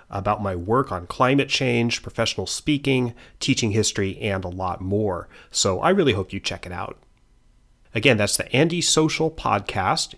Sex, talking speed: male, 165 wpm